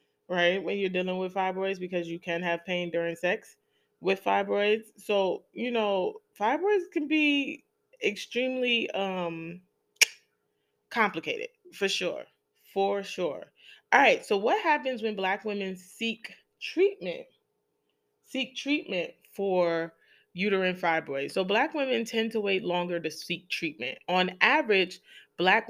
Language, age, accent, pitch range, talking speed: English, 20-39, American, 165-220 Hz, 130 wpm